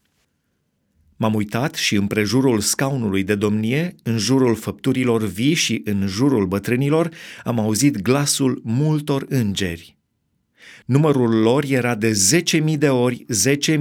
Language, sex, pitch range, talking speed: Romanian, male, 115-190 Hz, 125 wpm